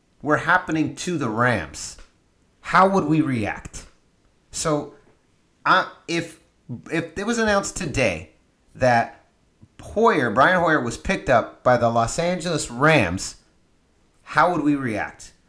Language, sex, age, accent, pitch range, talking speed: English, male, 30-49, American, 110-155 Hz, 130 wpm